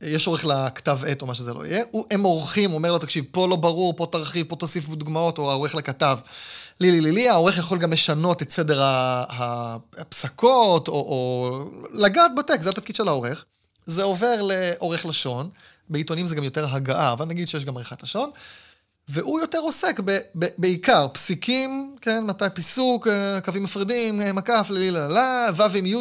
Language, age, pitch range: Hebrew, 20-39, 150-205 Hz